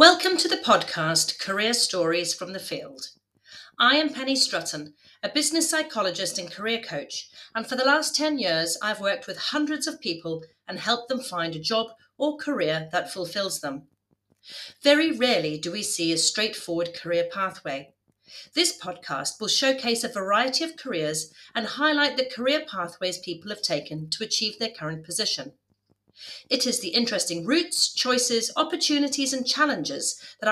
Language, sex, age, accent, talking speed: English, female, 40-59, British, 160 wpm